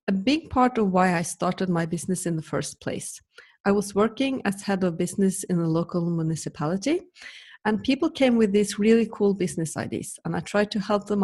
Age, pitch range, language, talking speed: 30-49, 180-235 Hz, English, 210 wpm